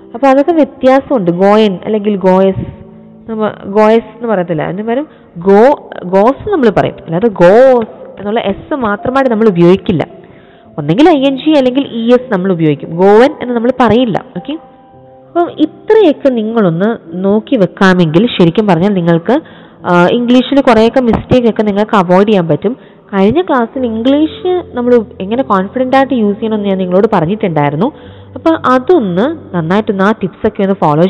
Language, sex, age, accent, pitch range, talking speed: Malayalam, female, 20-39, native, 185-250 Hz, 135 wpm